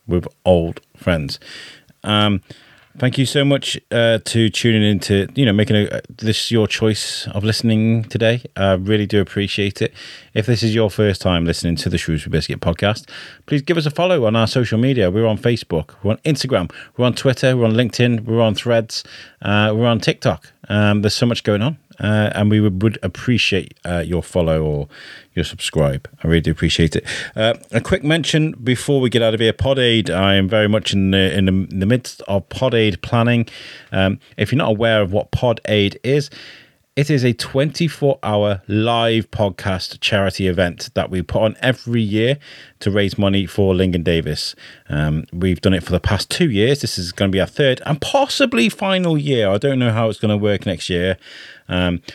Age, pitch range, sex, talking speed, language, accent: 30-49, 95-125 Hz, male, 205 wpm, English, British